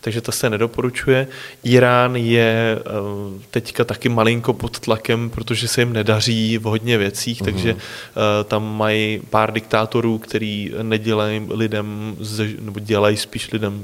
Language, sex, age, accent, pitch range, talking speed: Czech, male, 20-39, native, 105-115 Hz, 130 wpm